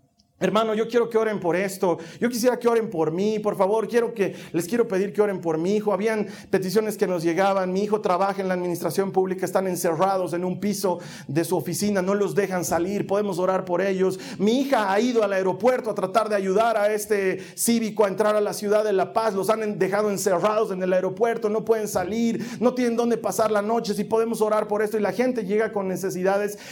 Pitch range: 195-265 Hz